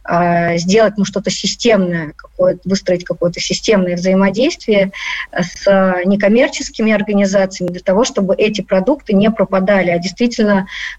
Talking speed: 110 wpm